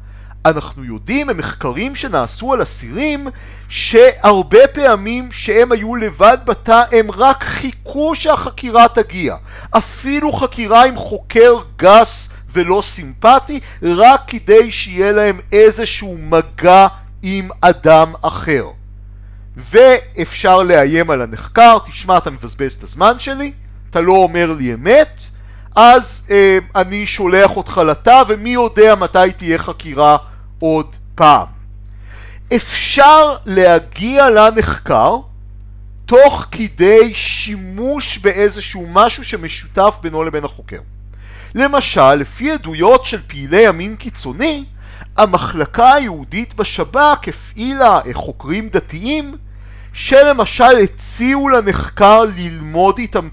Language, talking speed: Hebrew, 100 wpm